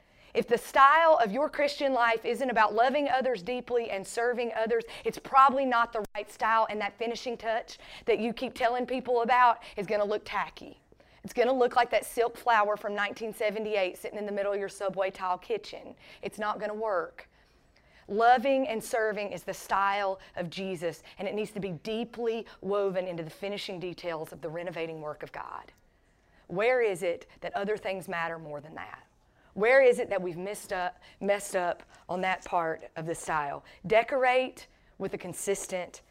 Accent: American